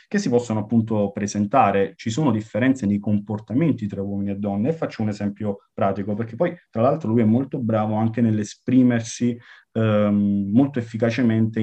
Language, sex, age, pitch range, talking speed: Italian, male, 30-49, 105-125 Hz, 165 wpm